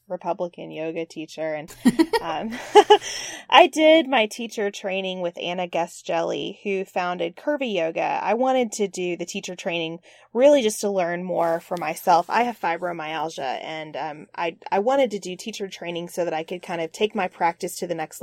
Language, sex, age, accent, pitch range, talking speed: English, female, 20-39, American, 170-215 Hz, 185 wpm